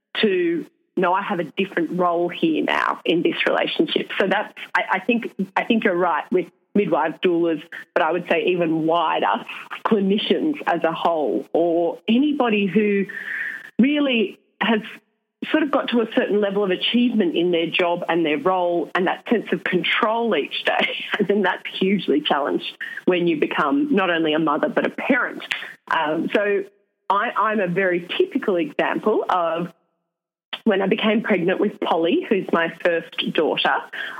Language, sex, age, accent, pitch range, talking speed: English, female, 30-49, Australian, 175-235 Hz, 165 wpm